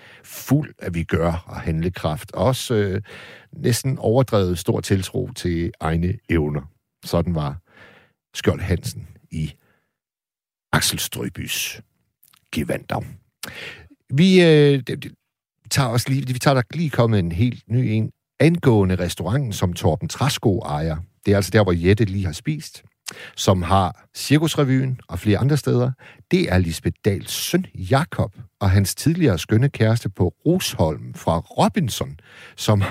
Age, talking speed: 60-79, 135 wpm